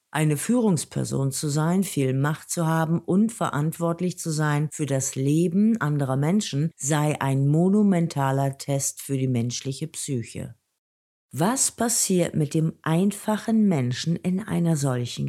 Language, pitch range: German, 135-180 Hz